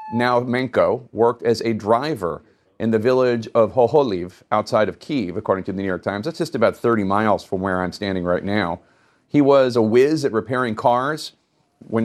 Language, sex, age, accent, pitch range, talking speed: English, male, 40-59, American, 105-140 Hz, 195 wpm